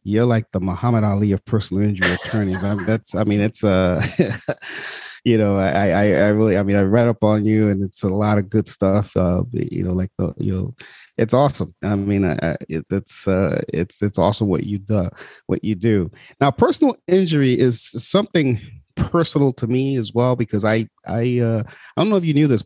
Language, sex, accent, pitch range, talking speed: English, male, American, 100-125 Hz, 220 wpm